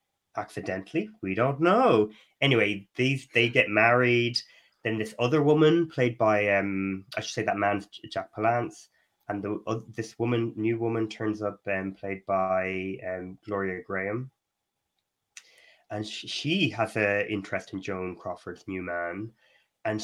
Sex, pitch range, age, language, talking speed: male, 105-135 Hz, 20-39, English, 150 wpm